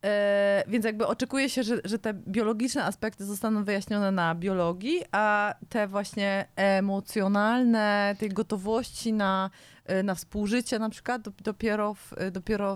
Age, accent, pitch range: 20-39, native, 185-210 Hz